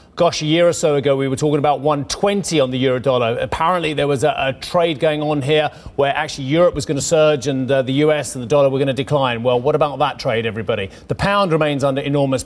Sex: male